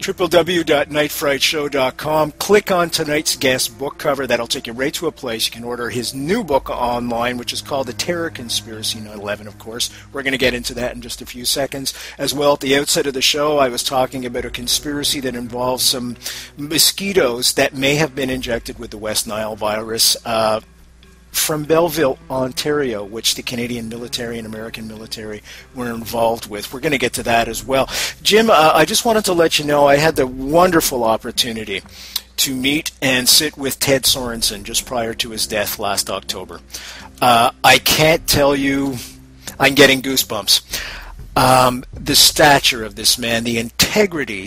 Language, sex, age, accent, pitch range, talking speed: English, male, 50-69, American, 115-145 Hz, 180 wpm